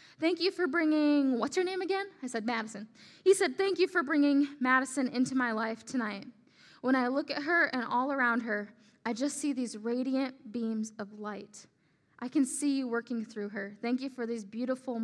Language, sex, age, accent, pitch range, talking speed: English, female, 10-29, American, 230-290 Hz, 205 wpm